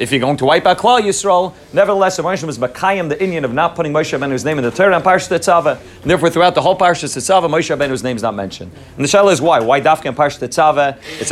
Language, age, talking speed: English, 30-49, 265 wpm